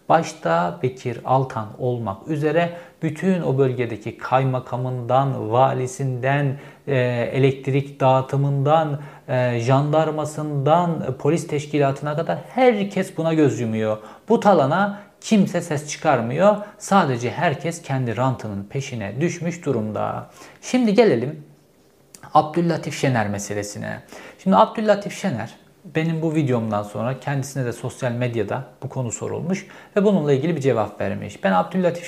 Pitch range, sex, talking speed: 125-170 Hz, male, 110 wpm